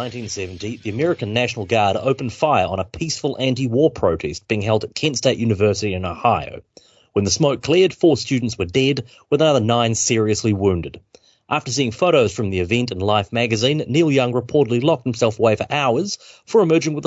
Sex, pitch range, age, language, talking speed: male, 105-140 Hz, 30-49, English, 185 wpm